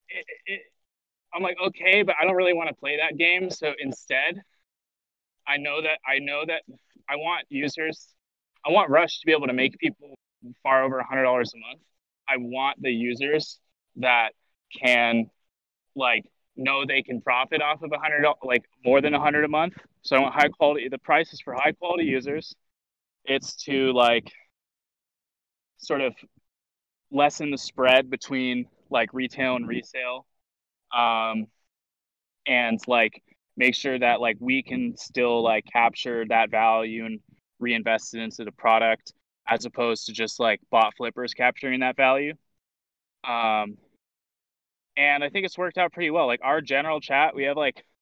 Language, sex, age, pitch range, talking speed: English, male, 20-39, 120-150 Hz, 170 wpm